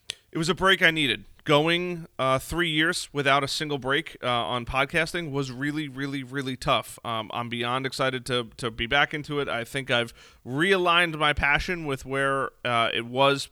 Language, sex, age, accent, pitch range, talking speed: English, male, 30-49, American, 120-155 Hz, 190 wpm